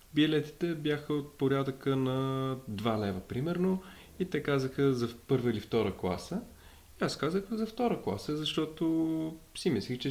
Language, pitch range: Bulgarian, 110-140 Hz